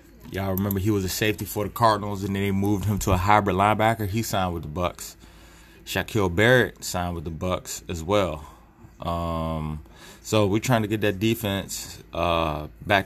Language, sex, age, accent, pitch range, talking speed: English, male, 20-39, American, 85-105 Hz, 190 wpm